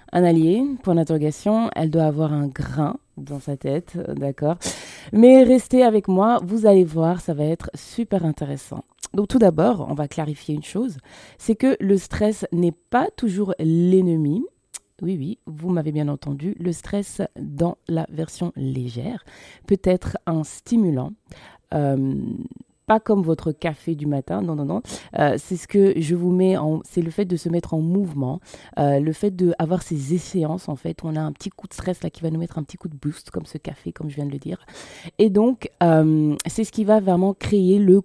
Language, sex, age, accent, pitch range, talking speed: French, female, 20-39, French, 155-195 Hz, 200 wpm